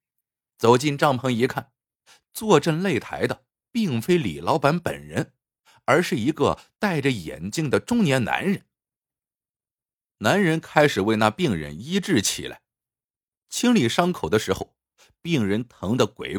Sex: male